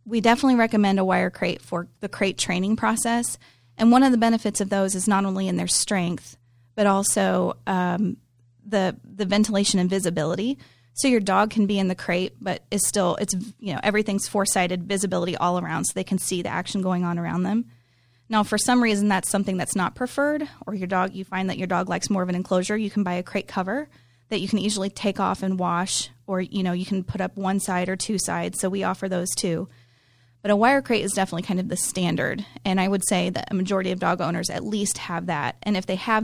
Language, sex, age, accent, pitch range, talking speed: English, female, 30-49, American, 180-210 Hz, 235 wpm